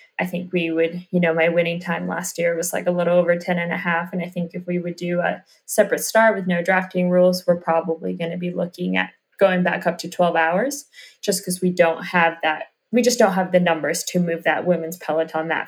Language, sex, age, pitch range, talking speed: English, female, 20-39, 170-185 Hz, 250 wpm